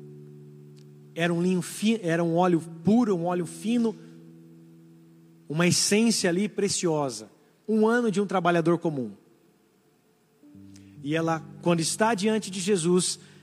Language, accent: Portuguese, Brazilian